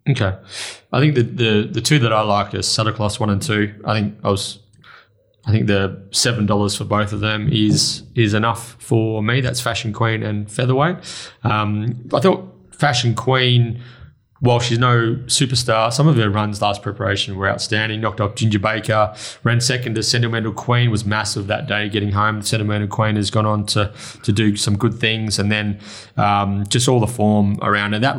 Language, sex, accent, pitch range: English, male, Australian, 105-120 Hz